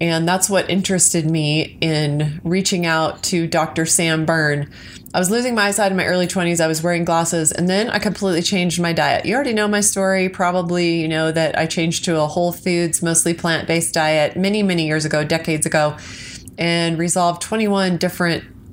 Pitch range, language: 160-200 Hz, English